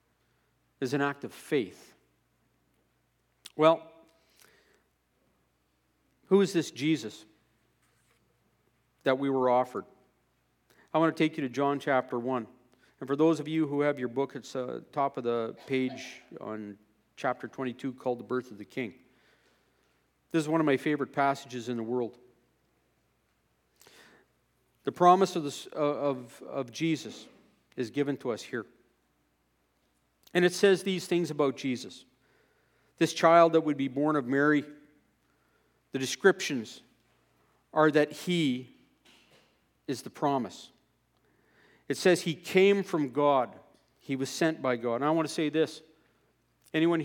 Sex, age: male, 50-69